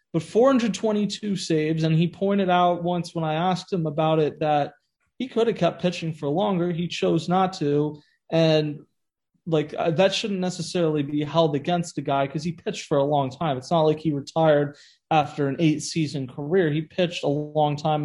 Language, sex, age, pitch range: English, male, 30-49, 150-180 Hz